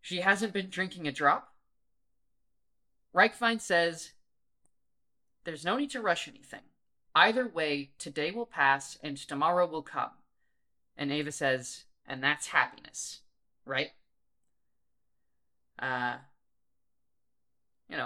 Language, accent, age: English, American, 20-39